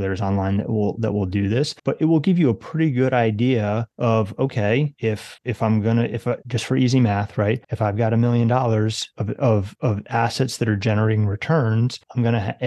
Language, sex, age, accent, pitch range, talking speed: English, male, 30-49, American, 110-130 Hz, 220 wpm